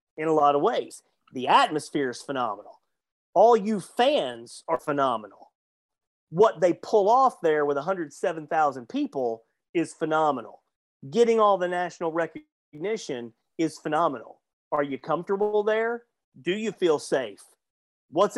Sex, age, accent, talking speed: male, 30-49, American, 130 wpm